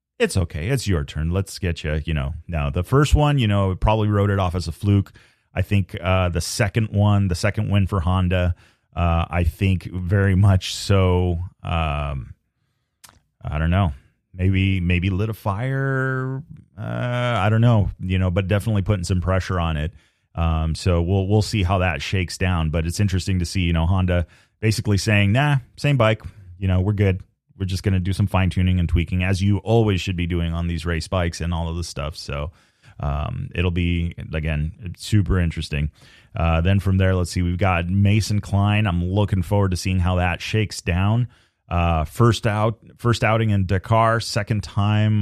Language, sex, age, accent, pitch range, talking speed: English, male, 30-49, American, 85-100 Hz, 195 wpm